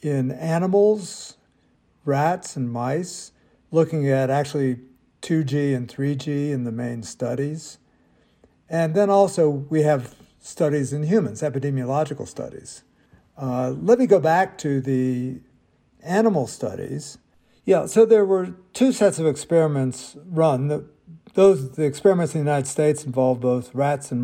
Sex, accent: male, American